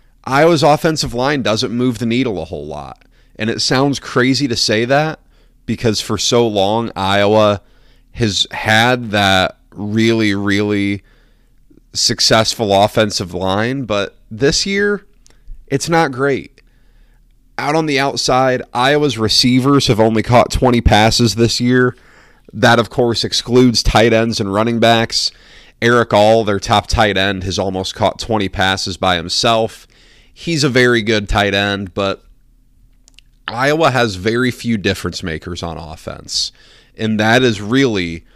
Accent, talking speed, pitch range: American, 140 wpm, 100-125 Hz